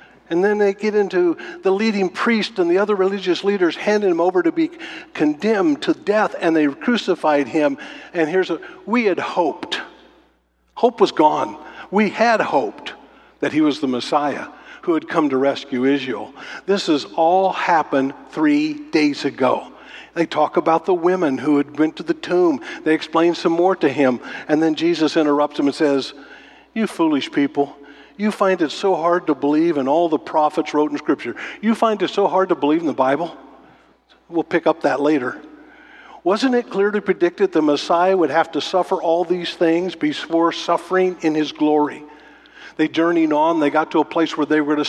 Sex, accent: male, American